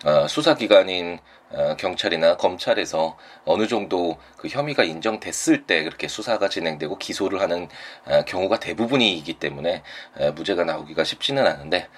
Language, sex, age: Korean, male, 20-39